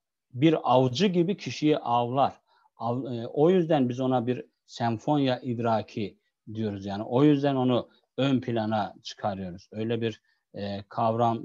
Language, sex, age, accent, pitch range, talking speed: Turkish, male, 50-69, native, 115-145 Hz, 135 wpm